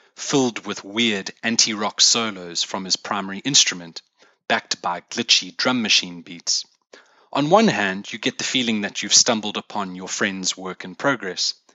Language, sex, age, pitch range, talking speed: English, male, 30-49, 90-125 Hz, 160 wpm